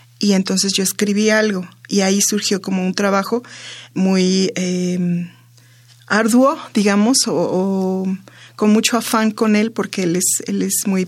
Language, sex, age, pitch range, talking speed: Spanish, female, 20-39, 185-225 Hz, 150 wpm